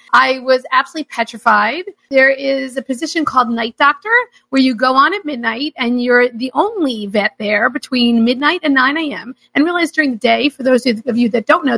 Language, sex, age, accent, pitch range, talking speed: English, female, 40-59, American, 240-300 Hz, 205 wpm